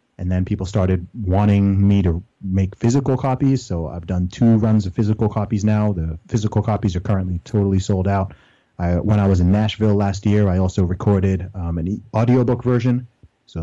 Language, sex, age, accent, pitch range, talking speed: English, male, 30-49, American, 95-110 Hz, 185 wpm